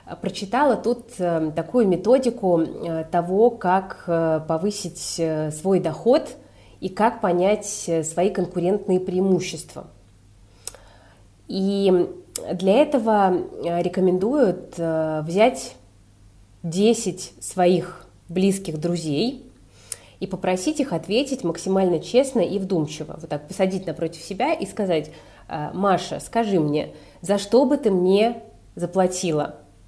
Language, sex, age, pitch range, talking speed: Russian, female, 20-39, 160-200 Hz, 95 wpm